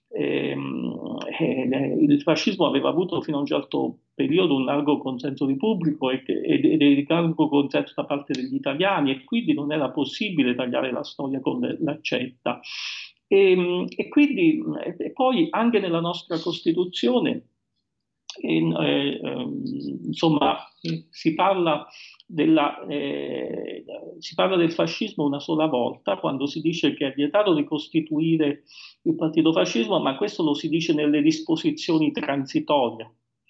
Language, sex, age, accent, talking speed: Italian, male, 50-69, native, 140 wpm